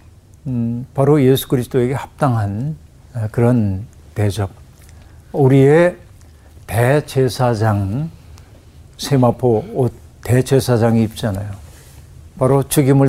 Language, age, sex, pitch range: Korean, 60-79, male, 105-140 Hz